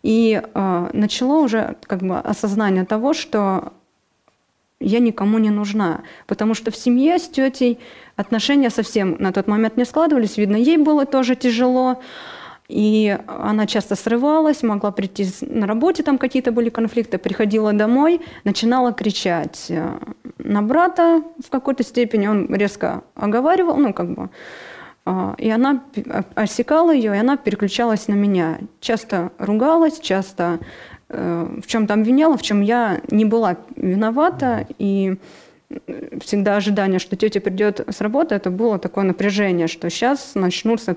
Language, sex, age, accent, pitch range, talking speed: Russian, female, 20-39, native, 205-260 Hz, 140 wpm